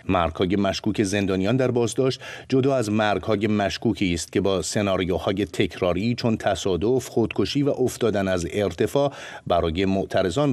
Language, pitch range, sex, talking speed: Persian, 95-125 Hz, male, 140 wpm